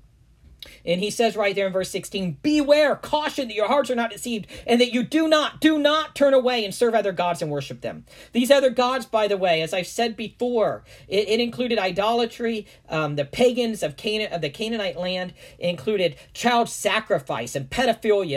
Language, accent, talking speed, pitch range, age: English, American, 195 wpm, 180-245 Hz, 40-59